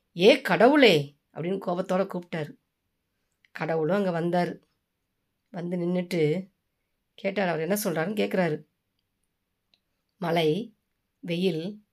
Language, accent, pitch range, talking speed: Tamil, native, 160-225 Hz, 85 wpm